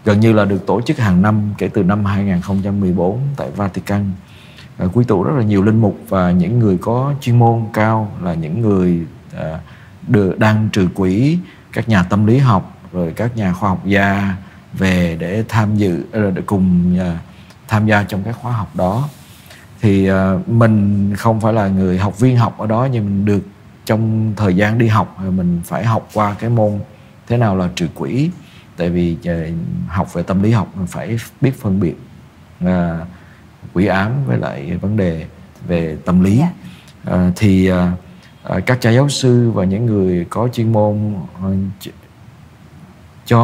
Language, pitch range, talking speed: Vietnamese, 95-115 Hz, 165 wpm